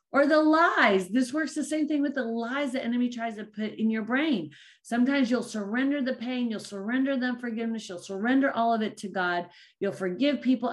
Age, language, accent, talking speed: 40-59, English, American, 215 wpm